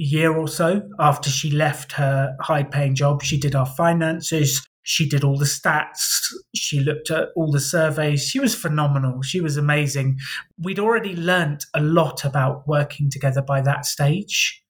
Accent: British